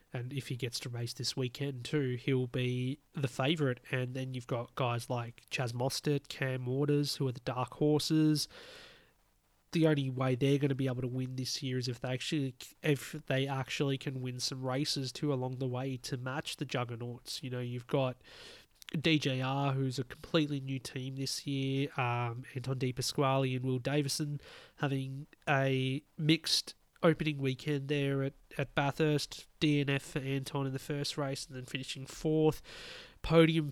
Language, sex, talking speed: English, male, 175 wpm